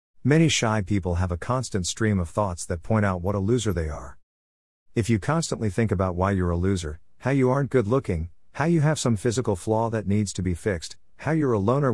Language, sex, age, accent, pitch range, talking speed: English, male, 50-69, American, 85-115 Hz, 225 wpm